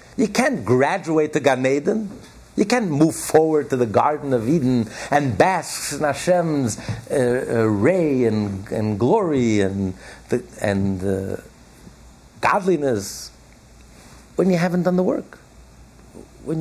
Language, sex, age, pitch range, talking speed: English, male, 60-79, 110-165 Hz, 135 wpm